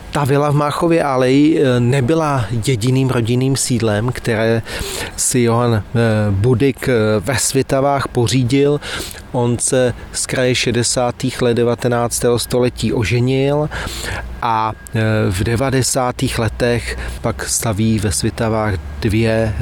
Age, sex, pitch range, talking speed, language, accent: 30-49, male, 110-125 Hz, 105 wpm, Czech, native